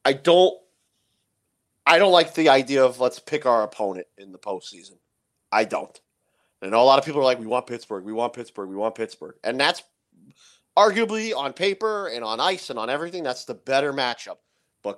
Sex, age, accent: male, 30-49, American